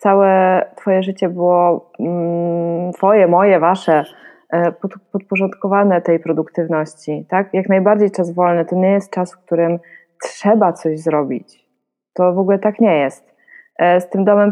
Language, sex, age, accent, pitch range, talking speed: Polish, female, 20-39, native, 170-195 Hz, 135 wpm